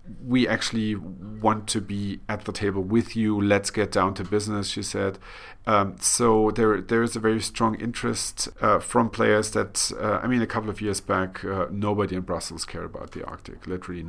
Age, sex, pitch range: 50-69, male, 100-110 Hz